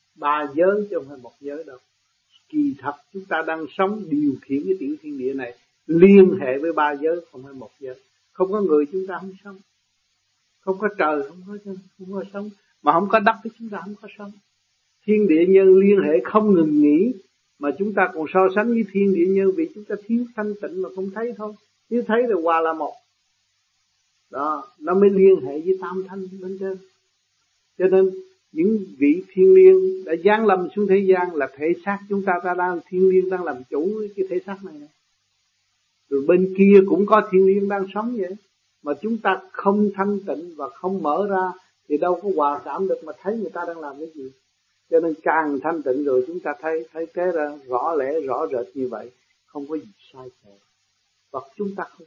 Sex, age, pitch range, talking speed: male, 60-79, 150-205 Hz, 215 wpm